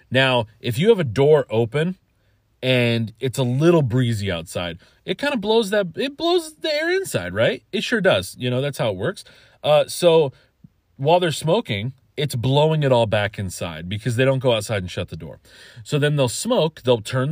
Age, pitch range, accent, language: 30-49, 110-155 Hz, American, English